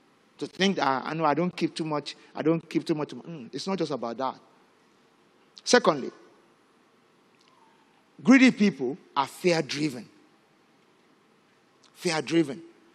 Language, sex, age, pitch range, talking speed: English, male, 50-69, 160-215 Hz, 130 wpm